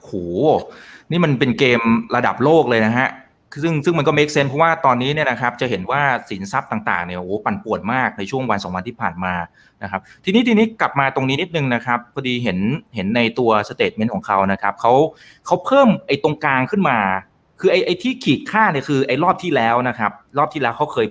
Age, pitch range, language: 30-49, 115-165 Hz, Thai